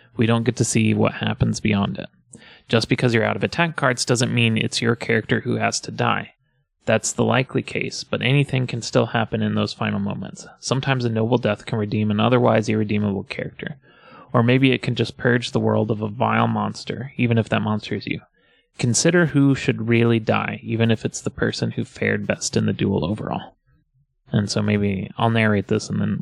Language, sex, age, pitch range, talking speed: English, male, 20-39, 105-120 Hz, 210 wpm